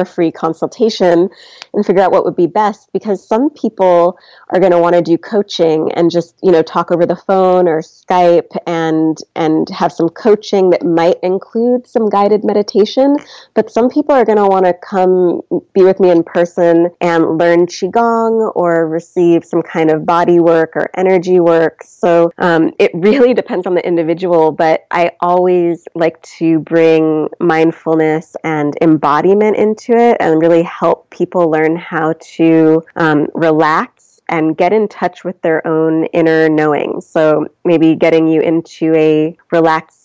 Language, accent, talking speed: English, American, 165 wpm